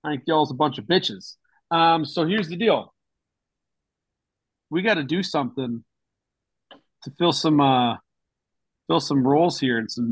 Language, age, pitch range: English, 30-49, 130-165 Hz